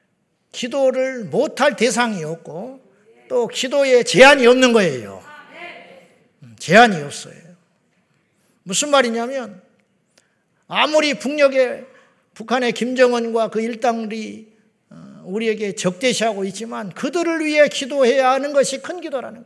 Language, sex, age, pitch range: Korean, male, 50-69, 205-270 Hz